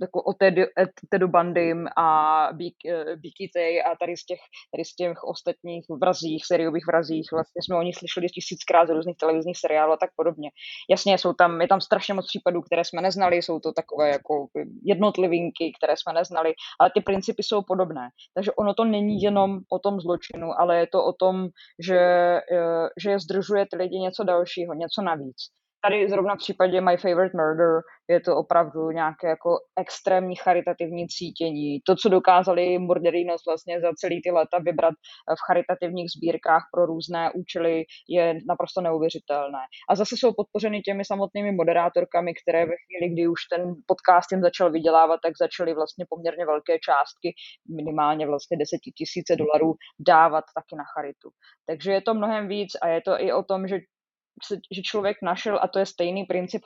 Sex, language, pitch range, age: female, Czech, 165-190 Hz, 20-39